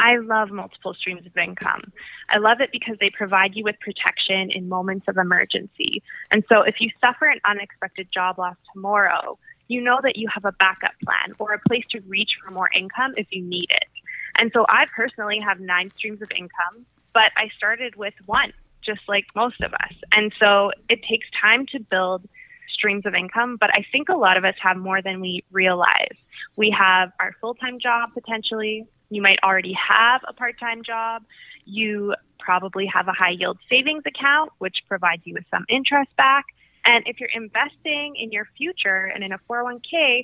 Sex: female